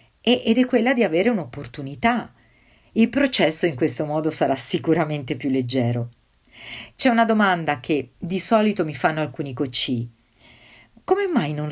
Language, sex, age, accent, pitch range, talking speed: Italian, female, 50-69, native, 130-210 Hz, 145 wpm